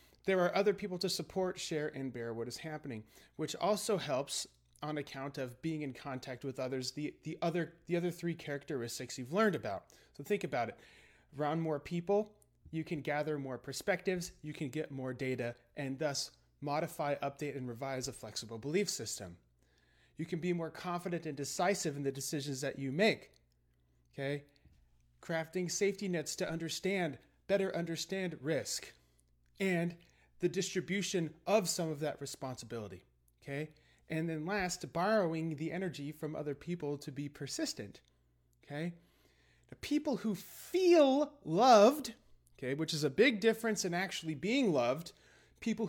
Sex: male